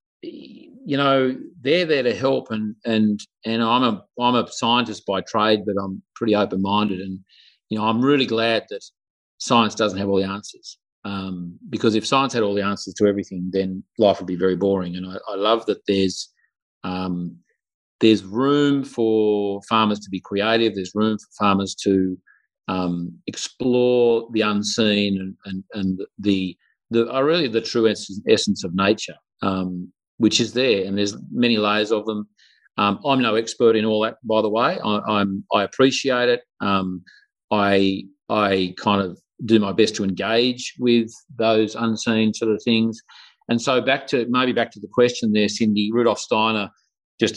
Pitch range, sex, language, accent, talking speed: 95-115 Hz, male, English, Australian, 175 wpm